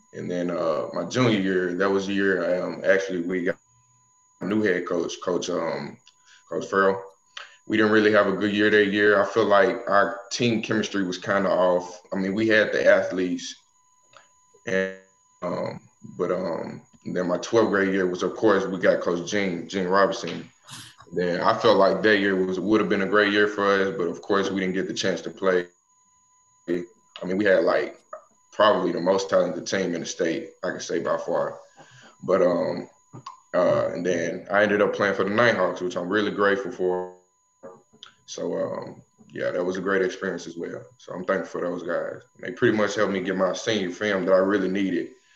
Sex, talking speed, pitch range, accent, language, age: male, 205 wpm, 95-125 Hz, American, English, 20-39